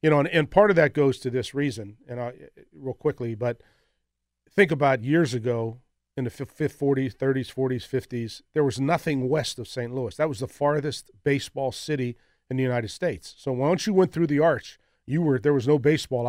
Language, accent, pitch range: English, American, 125-145 Hz